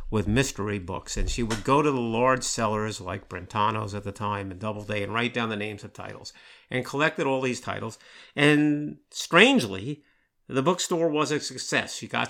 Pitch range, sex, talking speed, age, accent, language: 110-140 Hz, male, 190 wpm, 50-69, American, English